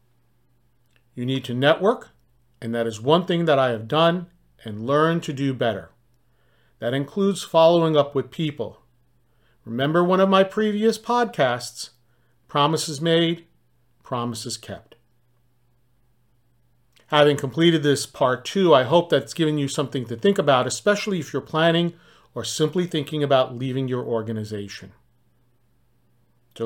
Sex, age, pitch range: male, 40-59, 120-165 Hz